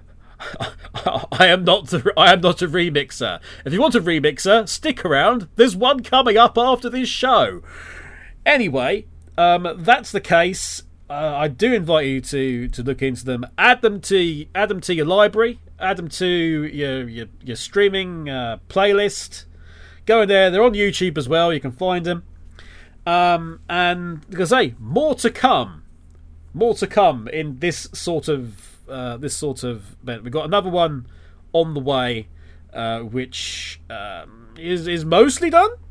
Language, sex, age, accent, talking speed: English, male, 30-49, British, 170 wpm